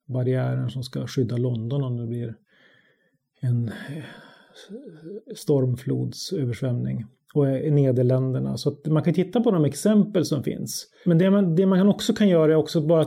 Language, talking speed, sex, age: Swedish, 155 wpm, male, 30-49